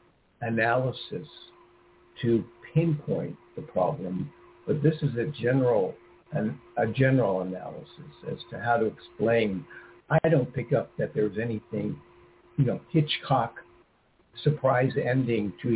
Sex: male